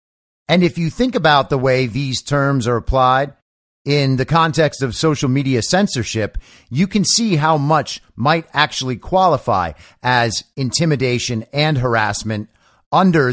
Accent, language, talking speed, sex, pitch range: American, English, 140 wpm, male, 115-165 Hz